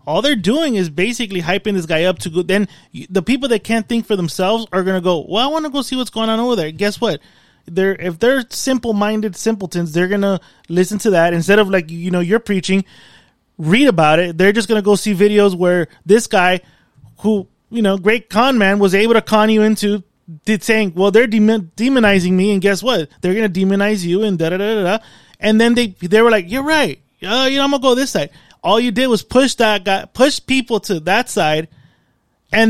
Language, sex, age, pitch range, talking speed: English, male, 20-39, 185-225 Hz, 235 wpm